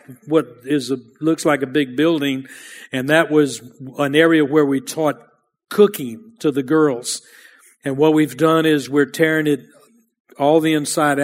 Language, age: English, 50-69